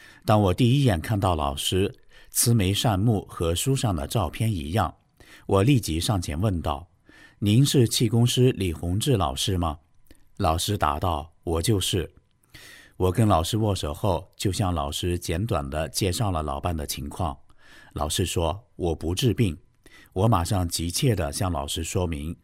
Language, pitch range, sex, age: Chinese, 85-115 Hz, male, 50-69